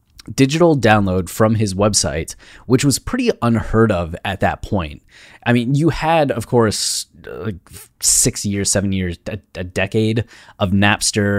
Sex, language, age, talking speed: male, English, 20-39, 155 wpm